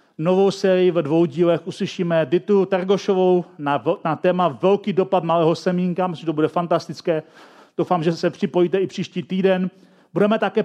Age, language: 40-59, Czech